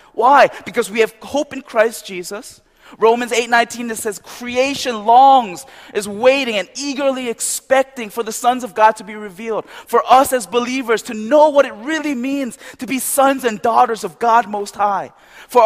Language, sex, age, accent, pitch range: Korean, male, 20-39, American, 210-250 Hz